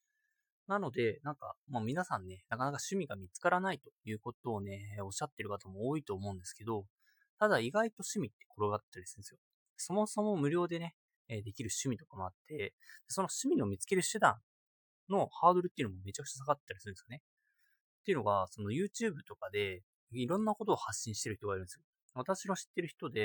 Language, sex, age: Japanese, male, 20-39